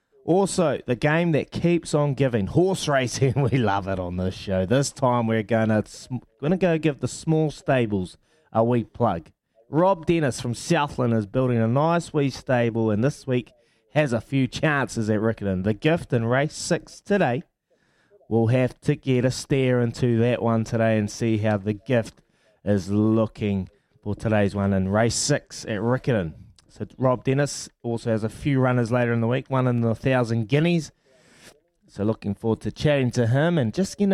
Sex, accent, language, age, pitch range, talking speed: male, Australian, English, 20-39, 110-145 Hz, 185 wpm